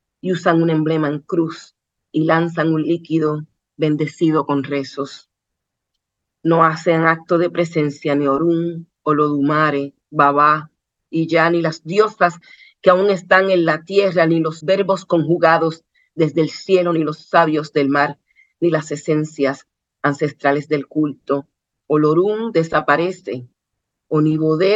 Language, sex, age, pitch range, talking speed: Spanish, female, 40-59, 150-170 Hz, 130 wpm